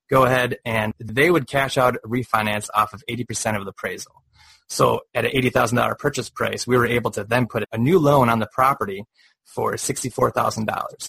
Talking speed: 185 wpm